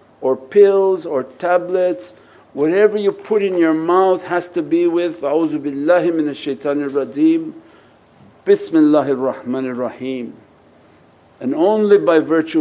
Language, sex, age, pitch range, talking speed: English, male, 60-79, 130-180 Hz, 120 wpm